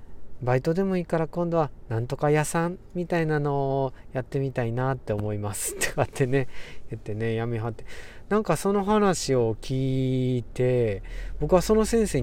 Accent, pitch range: native, 115-150 Hz